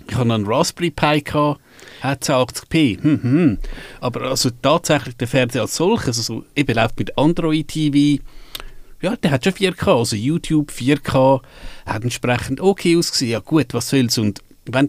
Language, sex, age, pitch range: German, male, 50-69, 125-150 Hz